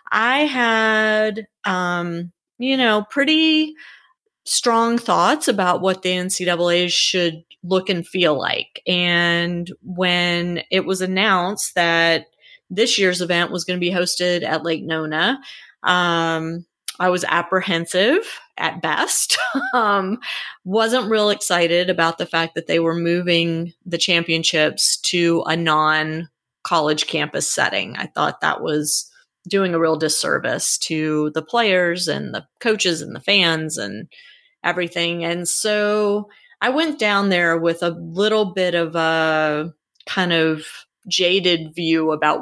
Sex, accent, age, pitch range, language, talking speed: female, American, 30-49, 165-210 Hz, English, 135 wpm